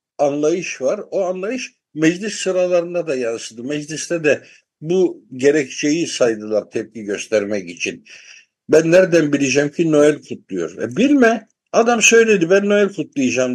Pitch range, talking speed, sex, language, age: 125-185 Hz, 130 wpm, male, Turkish, 60-79